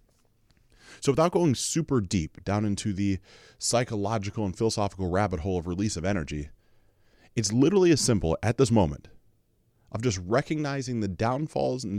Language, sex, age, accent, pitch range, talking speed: English, male, 30-49, American, 100-115 Hz, 150 wpm